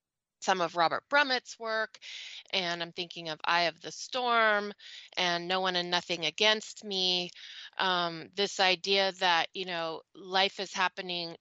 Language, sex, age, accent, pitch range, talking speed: English, female, 30-49, American, 175-220 Hz, 155 wpm